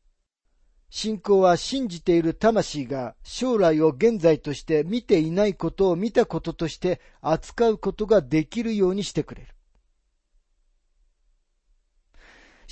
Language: Japanese